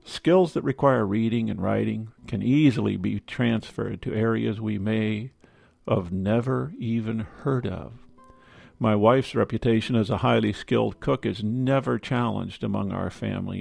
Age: 50-69